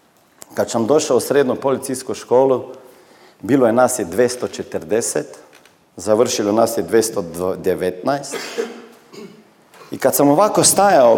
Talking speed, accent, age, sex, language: 105 wpm, native, 40-59, male, Croatian